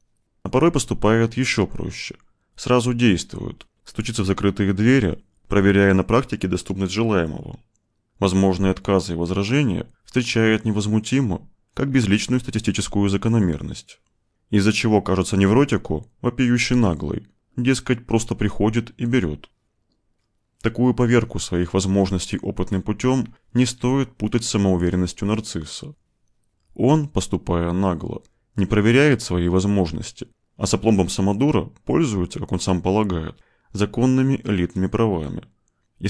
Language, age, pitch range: Russian, 20-39, 95-120 Hz